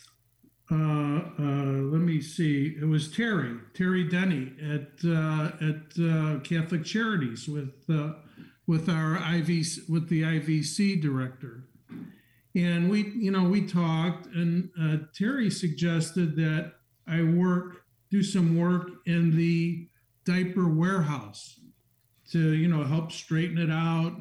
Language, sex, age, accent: English, male, 50-69, American